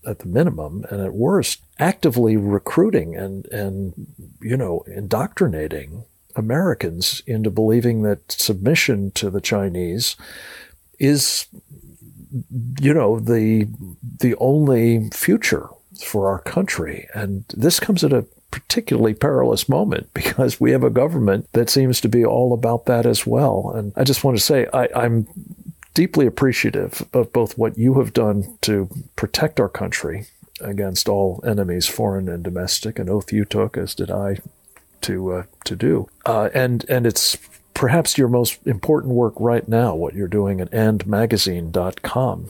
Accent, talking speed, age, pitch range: American, 150 wpm, 50-69, 95-120 Hz